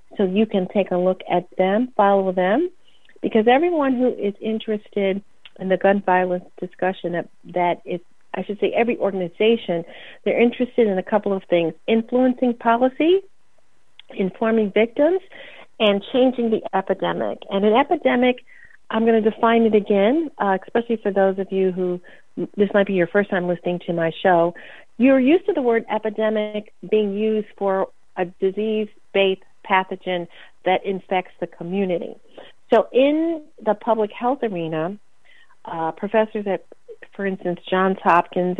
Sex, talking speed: female, 150 wpm